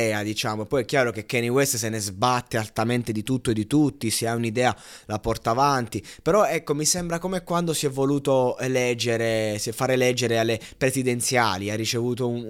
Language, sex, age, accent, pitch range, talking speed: Italian, male, 20-39, native, 115-140 Hz, 185 wpm